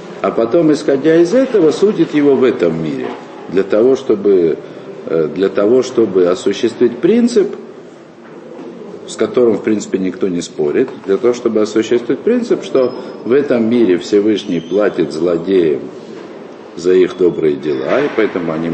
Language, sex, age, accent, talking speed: Russian, male, 50-69, native, 140 wpm